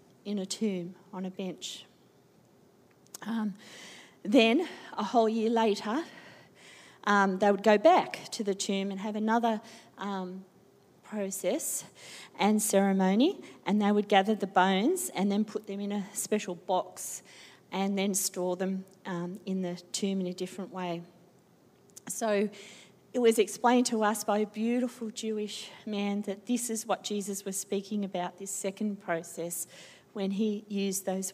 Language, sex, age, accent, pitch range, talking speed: English, female, 40-59, Australian, 190-225 Hz, 150 wpm